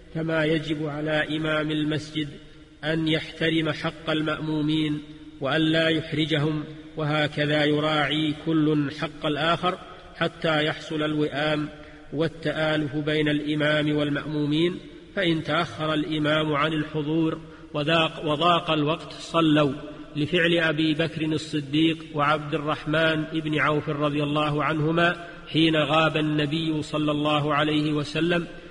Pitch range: 150-160 Hz